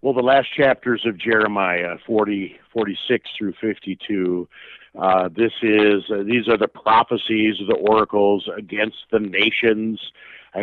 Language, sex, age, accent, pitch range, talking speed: English, male, 50-69, American, 100-125 Hz, 140 wpm